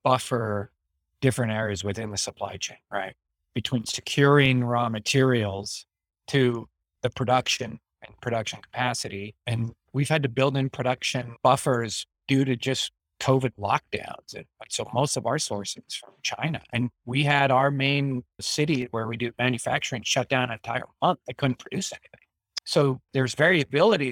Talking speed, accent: 150 wpm, American